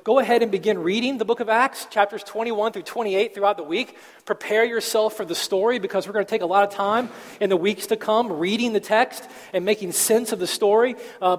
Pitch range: 185-220 Hz